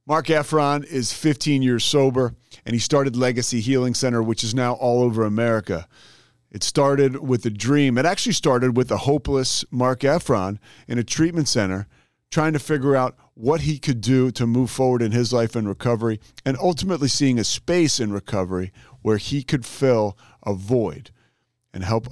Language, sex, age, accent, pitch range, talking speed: English, male, 40-59, American, 105-135 Hz, 180 wpm